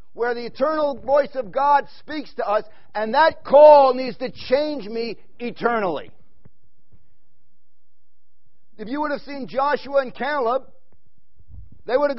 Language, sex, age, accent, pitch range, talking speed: English, male, 50-69, American, 200-270 Hz, 140 wpm